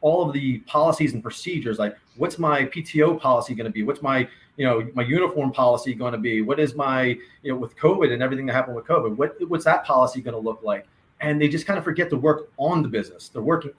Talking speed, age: 250 wpm, 30-49